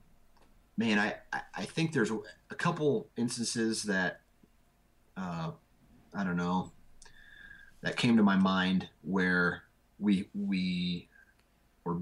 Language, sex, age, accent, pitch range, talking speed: English, male, 30-49, American, 95-140 Hz, 110 wpm